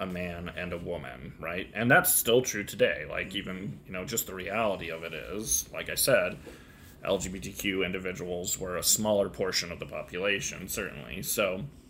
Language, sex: English, male